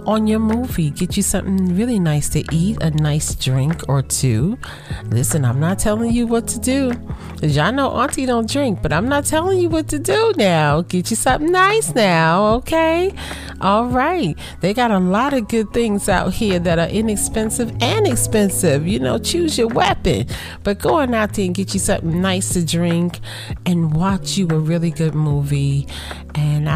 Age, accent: 40-59, American